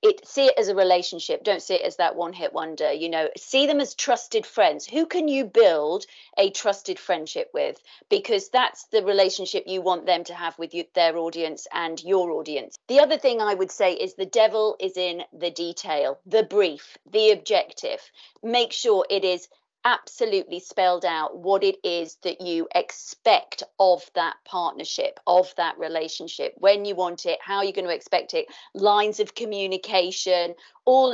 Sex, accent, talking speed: female, British, 180 wpm